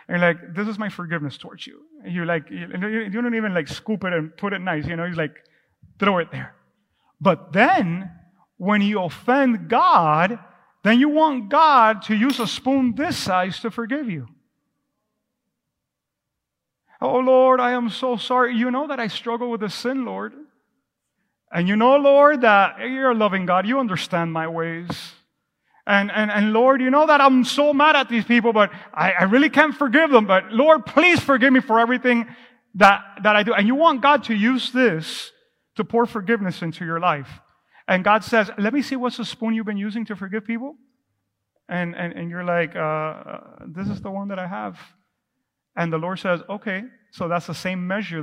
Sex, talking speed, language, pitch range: male, 195 wpm, English, 180-250 Hz